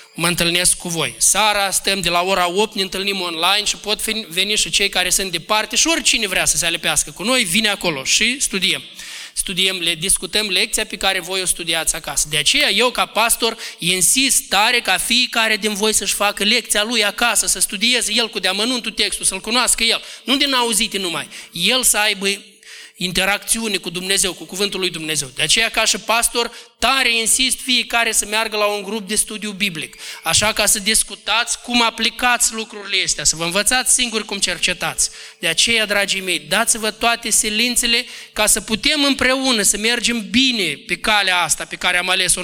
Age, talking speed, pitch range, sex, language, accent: 20-39, 190 wpm, 190-245 Hz, male, Romanian, native